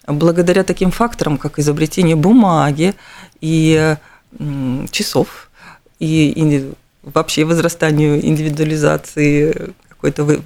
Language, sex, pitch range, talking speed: Russian, female, 155-205 Hz, 75 wpm